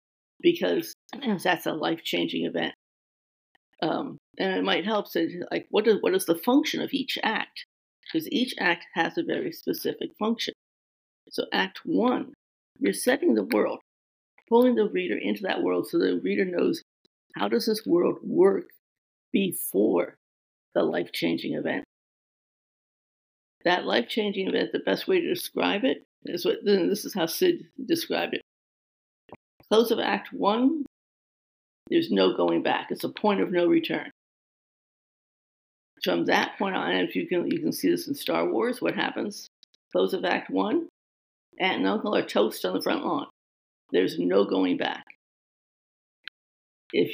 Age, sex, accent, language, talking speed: 50-69, female, American, English, 155 wpm